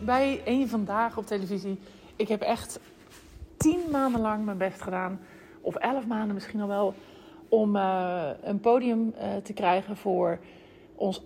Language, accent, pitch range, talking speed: Dutch, Dutch, 175-220 Hz, 155 wpm